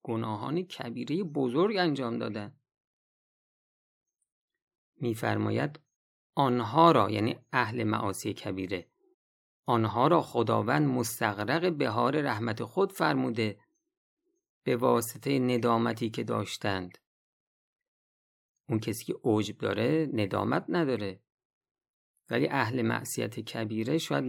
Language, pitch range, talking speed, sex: Persian, 110-150 Hz, 95 wpm, male